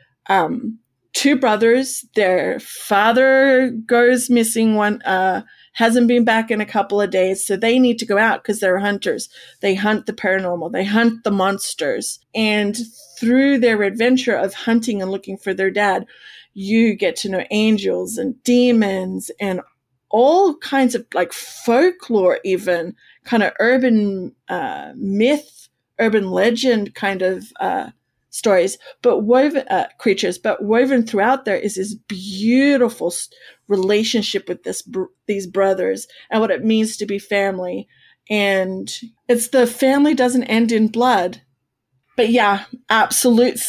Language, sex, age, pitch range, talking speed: English, female, 30-49, 195-240 Hz, 145 wpm